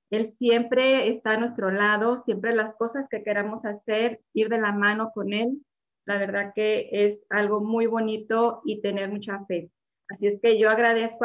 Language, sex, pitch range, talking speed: Spanish, female, 210-240 Hz, 180 wpm